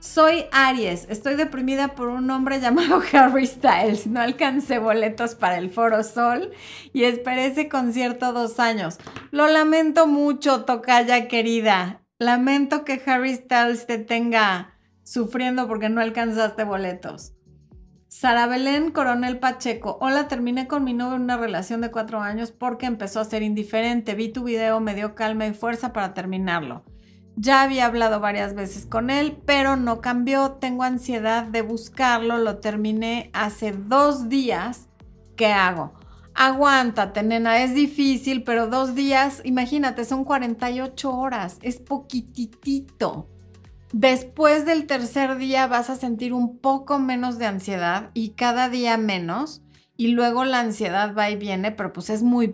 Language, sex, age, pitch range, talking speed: Spanish, female, 30-49, 220-265 Hz, 150 wpm